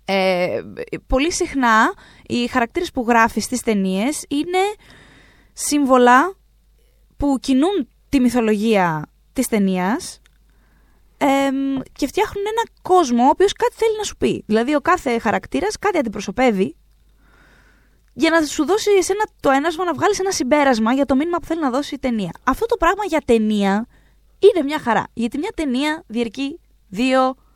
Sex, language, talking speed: female, Greek, 150 wpm